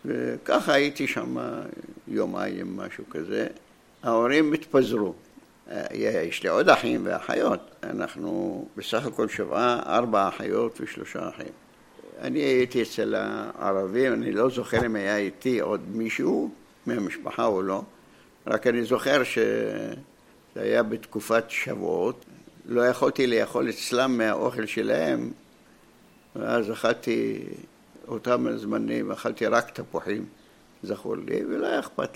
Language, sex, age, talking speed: Hebrew, male, 60-79, 115 wpm